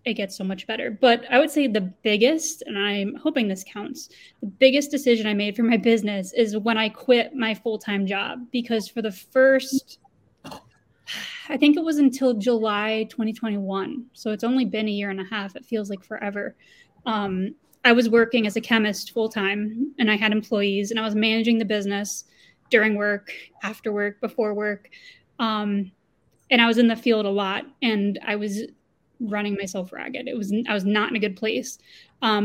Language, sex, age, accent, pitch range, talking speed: English, female, 20-39, American, 205-245 Hz, 190 wpm